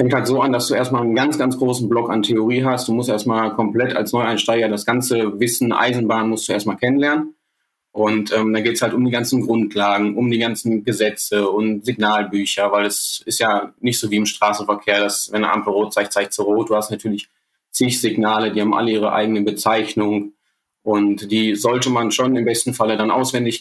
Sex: male